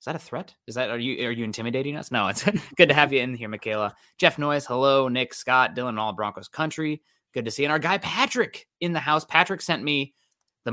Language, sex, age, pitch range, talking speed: English, male, 20-39, 105-145 Hz, 250 wpm